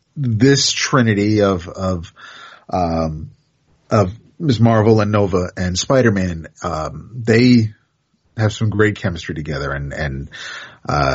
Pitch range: 90-120 Hz